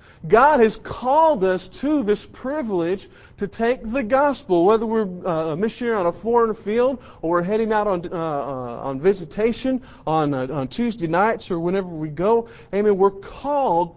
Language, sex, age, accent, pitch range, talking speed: English, male, 40-59, American, 195-270 Hz, 170 wpm